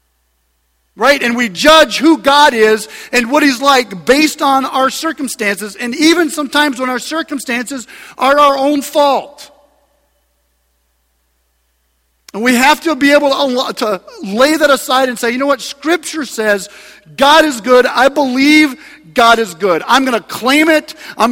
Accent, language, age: American, English, 50-69